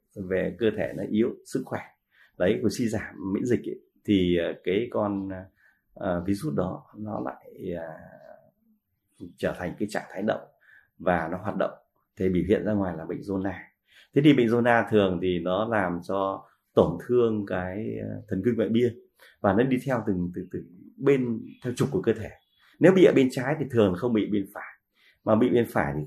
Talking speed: 200 wpm